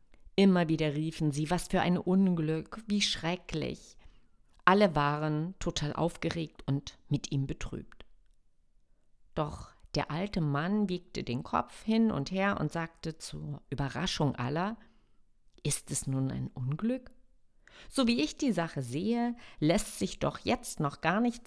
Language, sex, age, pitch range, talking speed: German, female, 50-69, 140-210 Hz, 145 wpm